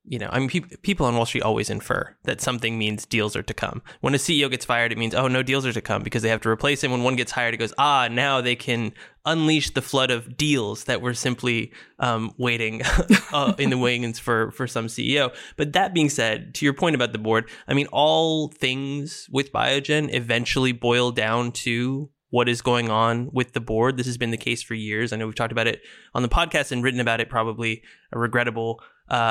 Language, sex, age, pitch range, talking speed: English, male, 20-39, 120-150 Hz, 235 wpm